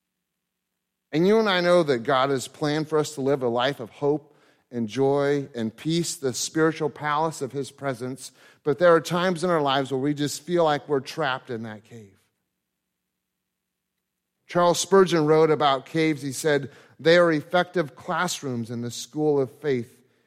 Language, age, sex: English, 40-59, male